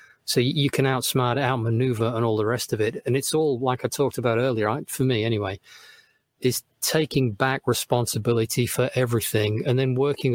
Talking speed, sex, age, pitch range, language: 185 wpm, male, 40-59, 115-145 Hz, English